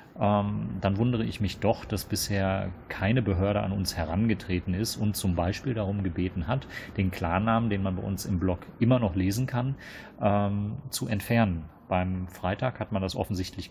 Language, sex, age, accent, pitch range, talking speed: German, male, 40-59, German, 95-115 Hz, 180 wpm